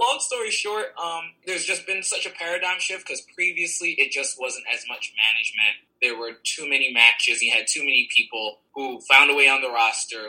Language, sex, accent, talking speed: English, male, American, 210 wpm